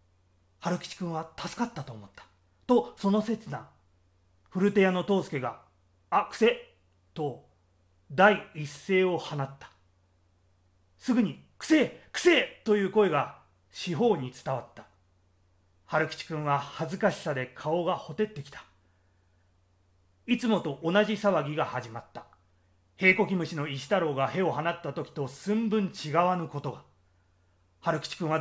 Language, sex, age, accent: Japanese, male, 30-49, native